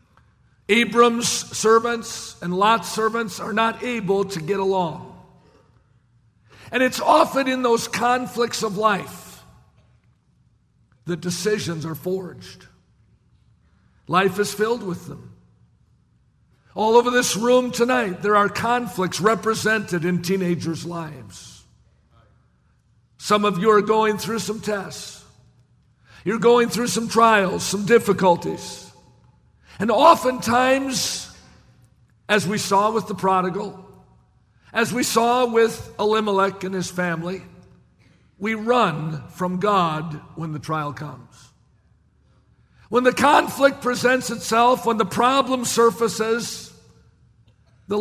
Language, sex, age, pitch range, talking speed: English, male, 50-69, 160-230 Hz, 110 wpm